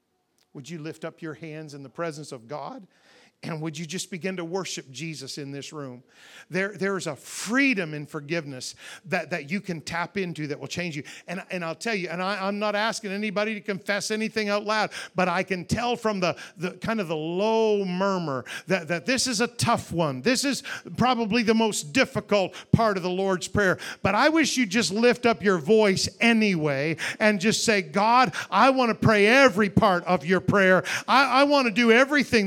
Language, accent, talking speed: English, American, 205 wpm